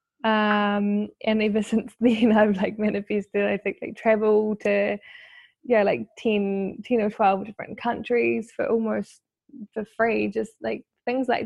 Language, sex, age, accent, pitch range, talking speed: English, female, 10-29, Australian, 205-230 Hz, 150 wpm